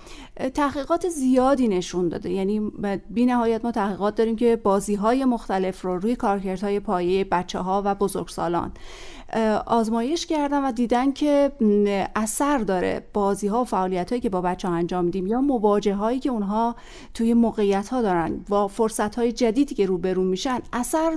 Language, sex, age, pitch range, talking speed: Persian, female, 30-49, 195-245 Hz, 165 wpm